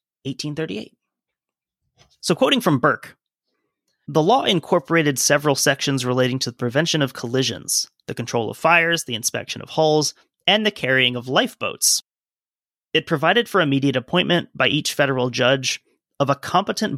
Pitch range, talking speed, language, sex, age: 125-155 Hz, 145 wpm, English, male, 30-49